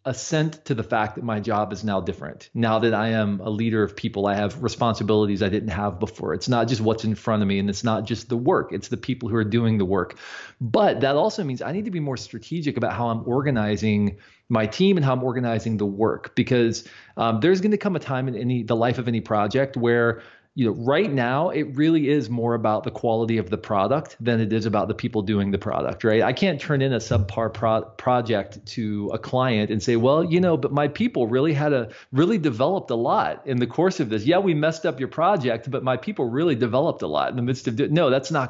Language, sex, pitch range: English, male, 110-140 Hz